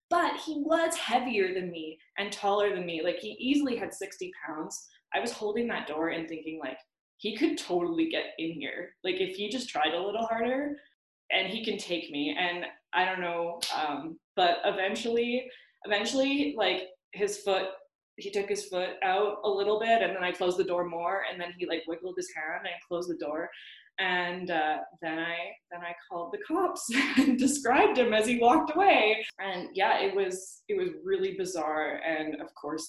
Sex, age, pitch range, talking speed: female, 20-39, 170-230 Hz, 195 wpm